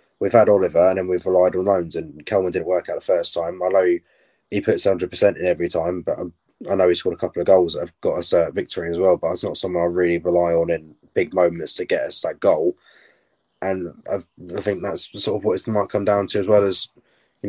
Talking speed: 265 wpm